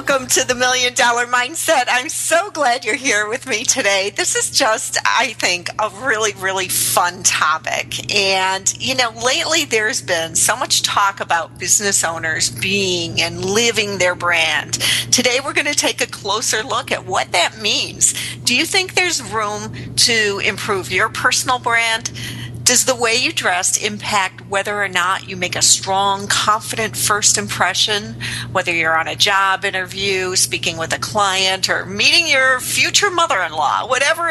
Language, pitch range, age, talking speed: English, 190-265 Hz, 40-59, 170 wpm